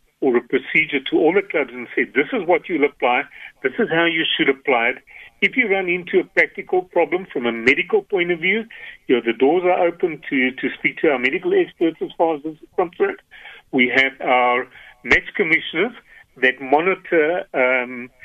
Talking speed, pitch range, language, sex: 200 wpm, 140-220 Hz, English, male